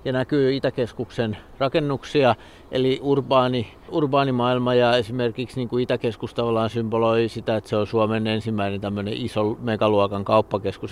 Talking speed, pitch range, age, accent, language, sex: 120 wpm, 105-125 Hz, 50-69, native, Finnish, male